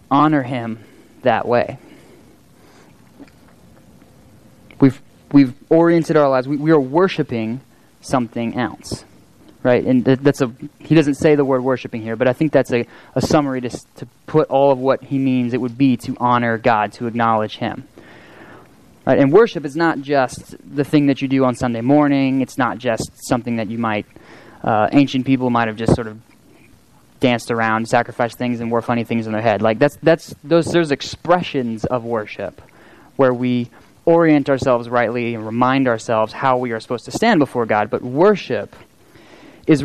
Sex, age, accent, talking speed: male, 20-39, American, 175 wpm